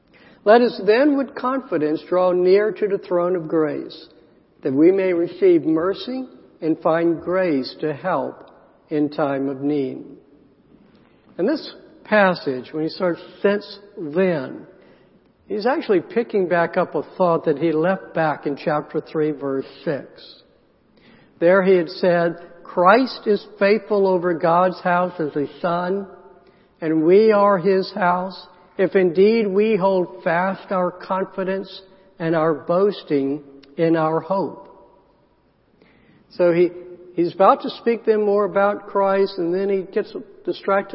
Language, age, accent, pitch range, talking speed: English, 60-79, American, 160-195 Hz, 140 wpm